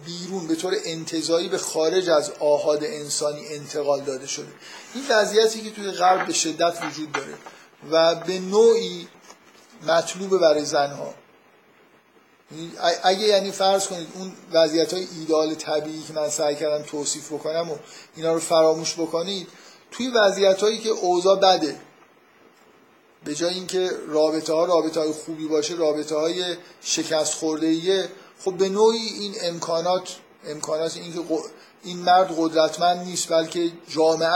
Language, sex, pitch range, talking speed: Persian, male, 155-185 Hz, 135 wpm